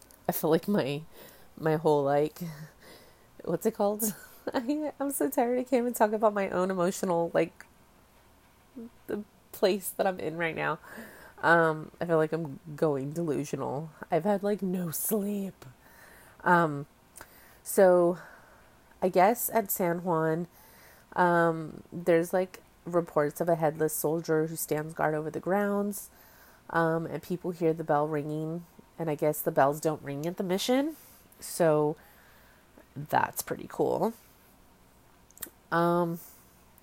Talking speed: 135 wpm